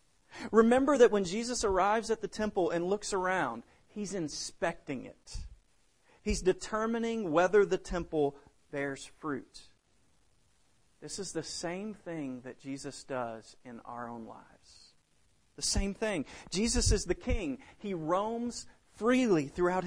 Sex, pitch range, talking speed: male, 145-215 Hz, 135 wpm